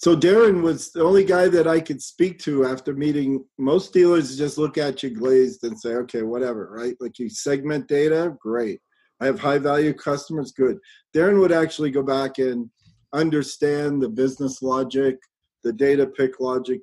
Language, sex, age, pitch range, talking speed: English, male, 40-59, 125-150 Hz, 180 wpm